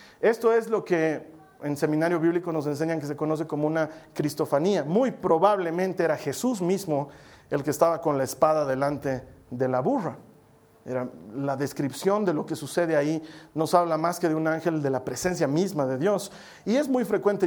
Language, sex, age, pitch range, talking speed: Spanish, male, 40-59, 150-205 Hz, 185 wpm